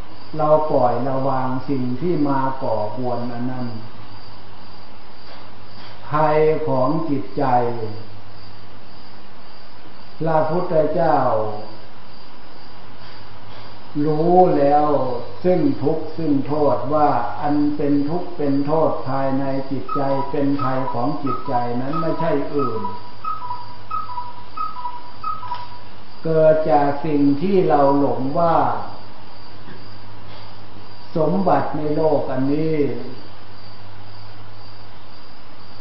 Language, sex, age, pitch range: Thai, male, 60-79, 105-155 Hz